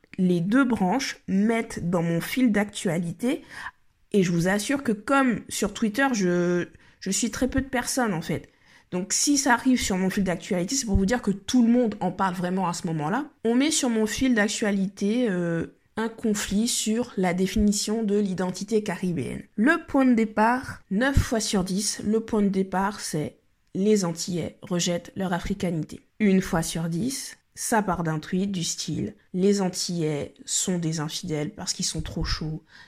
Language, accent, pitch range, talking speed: French, French, 180-225 Hz, 185 wpm